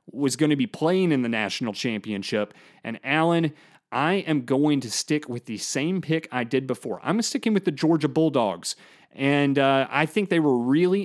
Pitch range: 140-175 Hz